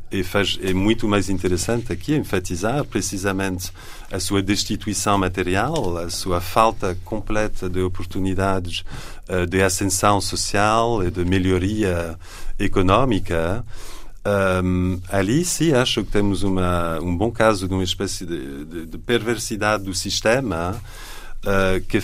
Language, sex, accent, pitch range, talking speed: Portuguese, male, French, 90-115 Hz, 115 wpm